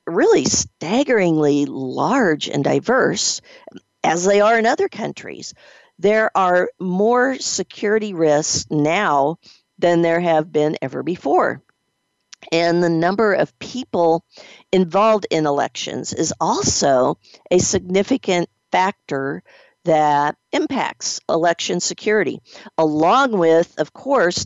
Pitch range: 160-220 Hz